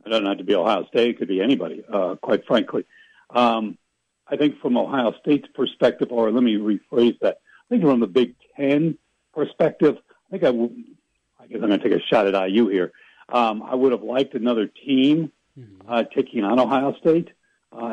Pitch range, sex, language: 110-155 Hz, male, English